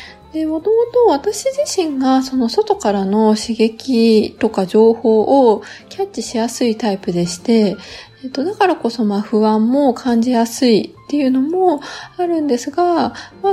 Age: 20-39